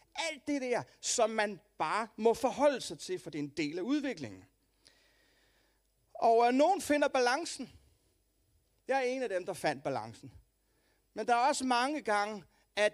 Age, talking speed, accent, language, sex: 40-59, 170 wpm, native, Danish, male